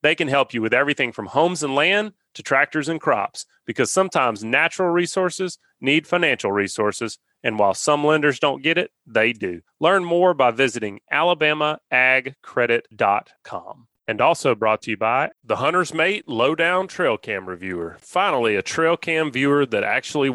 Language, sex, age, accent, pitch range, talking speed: English, male, 30-49, American, 115-155 Hz, 160 wpm